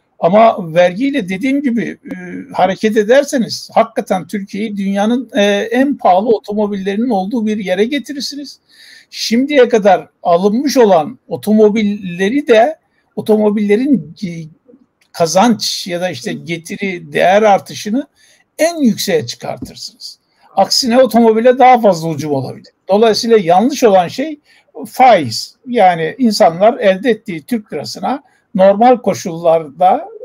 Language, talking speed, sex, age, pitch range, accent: Turkish, 105 wpm, male, 60-79, 185-250 Hz, native